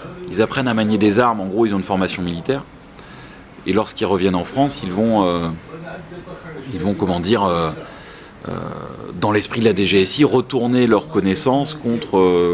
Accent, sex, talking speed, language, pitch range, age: French, male, 165 wpm, French, 95-125 Hz, 30-49